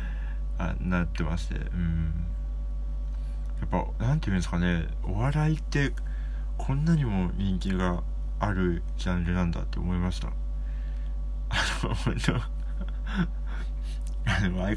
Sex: male